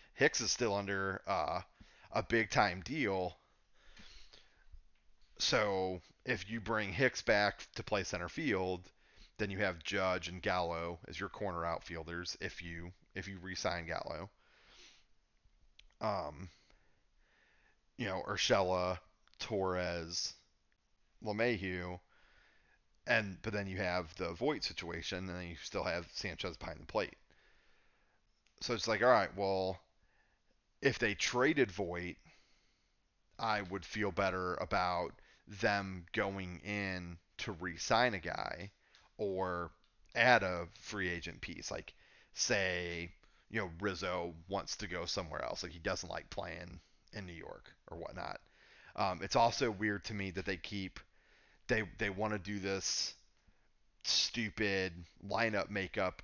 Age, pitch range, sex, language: 30-49, 90-100 Hz, male, English